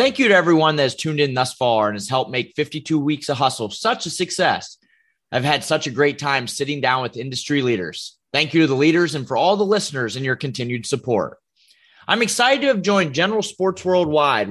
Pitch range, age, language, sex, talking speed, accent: 140-190 Hz, 30-49, English, male, 225 wpm, American